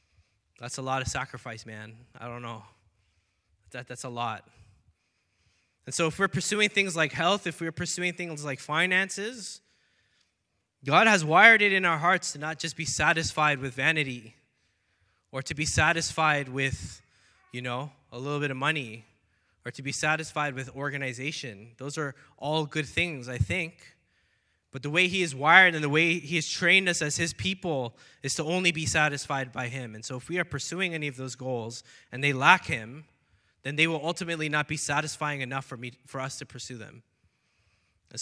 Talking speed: 185 wpm